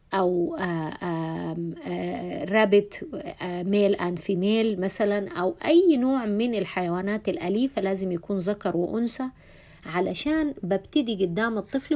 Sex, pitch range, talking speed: female, 180-245 Hz, 100 wpm